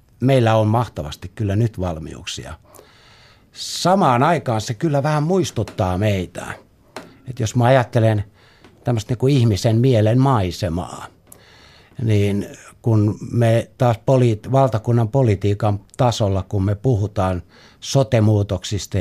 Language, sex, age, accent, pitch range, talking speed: Finnish, male, 60-79, native, 95-120 Hz, 105 wpm